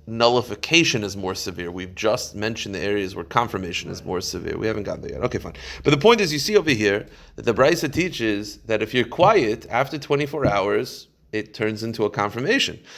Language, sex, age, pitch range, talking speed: English, male, 30-49, 115-170 Hz, 210 wpm